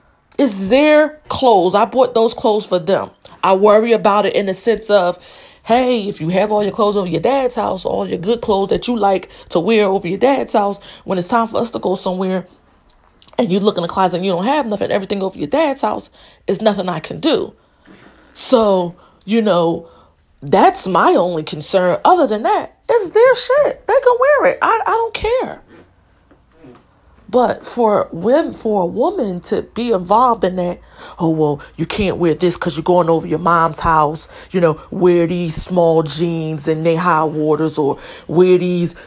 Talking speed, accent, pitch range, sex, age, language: 195 wpm, American, 170-235 Hz, female, 20-39, English